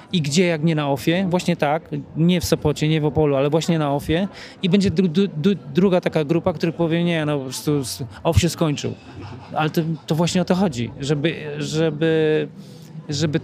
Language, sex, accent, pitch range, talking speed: Polish, male, native, 150-175 Hz, 200 wpm